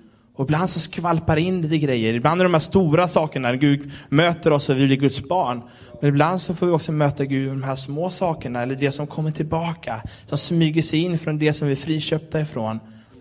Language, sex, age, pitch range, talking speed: Swedish, male, 20-39, 120-155 Hz, 230 wpm